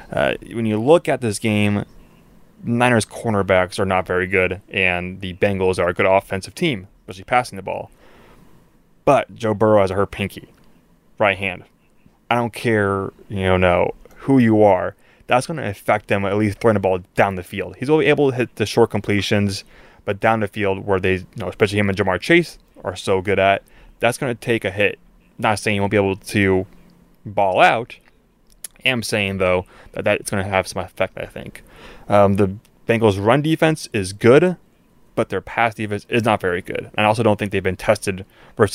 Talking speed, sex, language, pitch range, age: 210 wpm, male, English, 95-115 Hz, 20-39